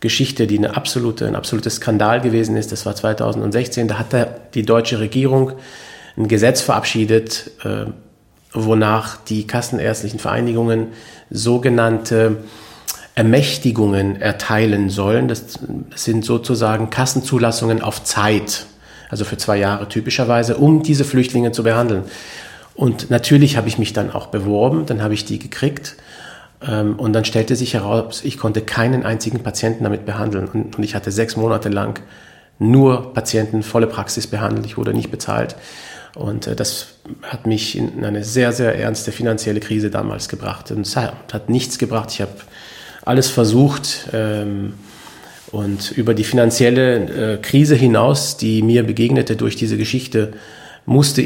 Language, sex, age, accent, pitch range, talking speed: German, male, 40-59, German, 110-125 Hz, 140 wpm